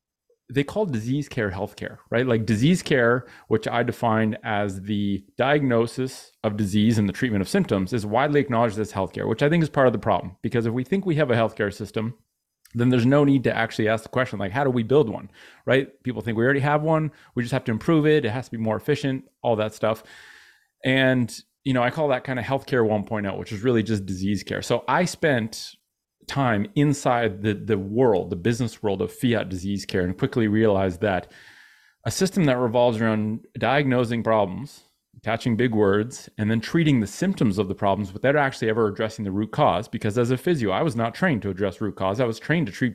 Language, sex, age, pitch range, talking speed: English, male, 30-49, 105-135 Hz, 220 wpm